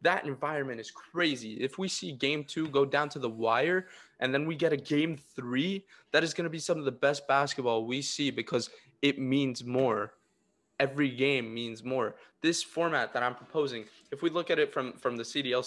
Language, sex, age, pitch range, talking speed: English, male, 20-39, 120-145 Hz, 210 wpm